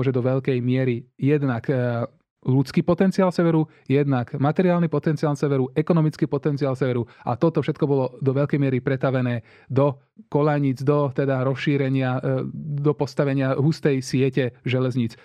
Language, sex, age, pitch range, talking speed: Slovak, male, 20-39, 130-150 Hz, 130 wpm